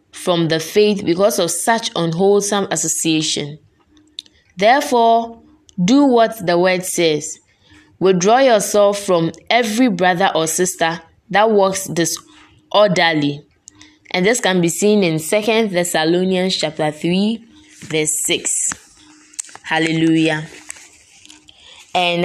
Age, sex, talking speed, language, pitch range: 20-39, female, 100 wpm, English, 160-210 Hz